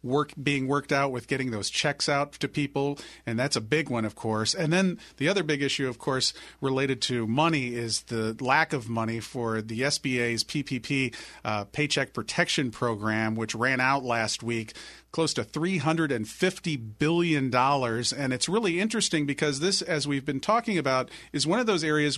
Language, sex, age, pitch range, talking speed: English, male, 40-59, 130-155 Hz, 185 wpm